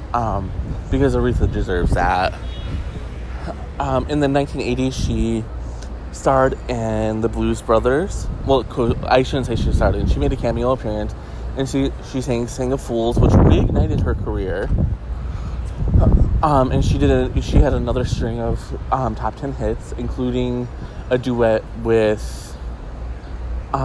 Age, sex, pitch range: 20-39, male, 90-135 Hz